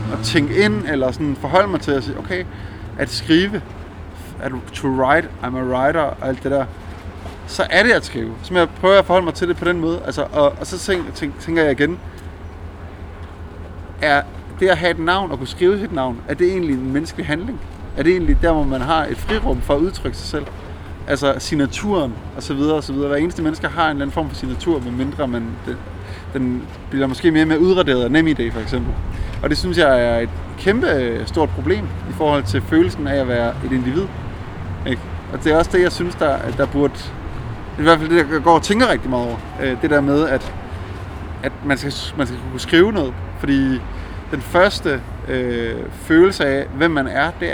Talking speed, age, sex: 215 wpm, 30-49, male